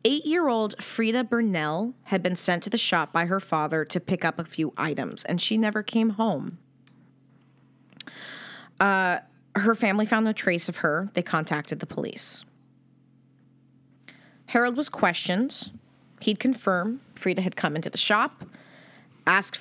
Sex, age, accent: female, 30-49, American